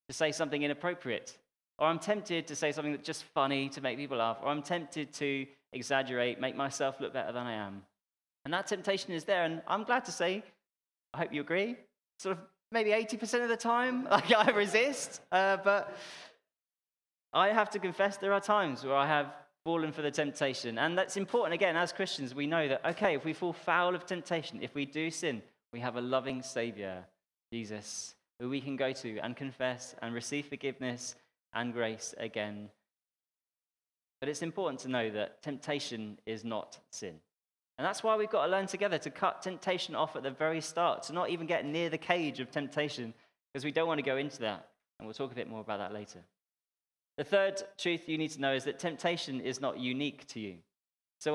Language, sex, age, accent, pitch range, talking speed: English, male, 20-39, British, 125-175 Hz, 205 wpm